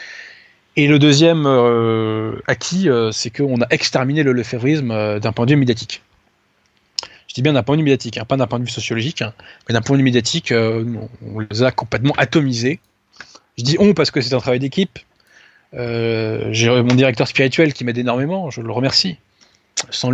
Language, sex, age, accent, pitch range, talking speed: French, male, 20-39, French, 115-140 Hz, 210 wpm